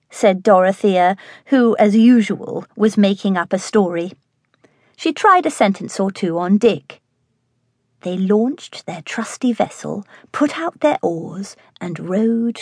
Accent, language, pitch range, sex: British, English, 170-225 Hz, female